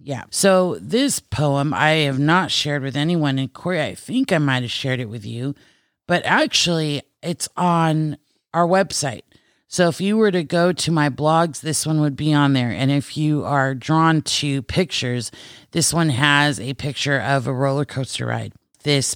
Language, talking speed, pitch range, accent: English, 185 wpm, 135-165 Hz, American